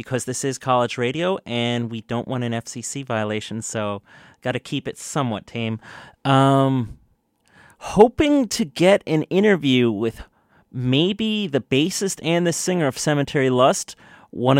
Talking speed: 150 wpm